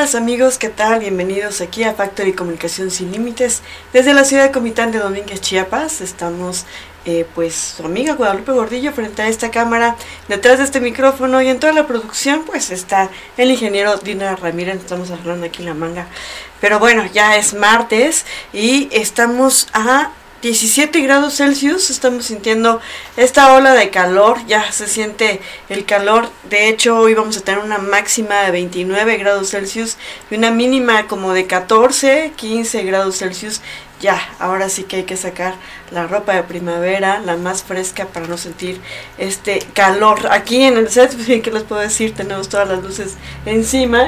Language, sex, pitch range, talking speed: Spanish, female, 185-240 Hz, 170 wpm